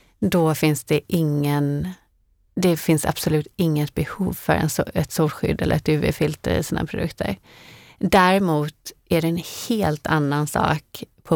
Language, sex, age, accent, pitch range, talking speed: Swedish, female, 30-49, native, 145-170 Hz, 145 wpm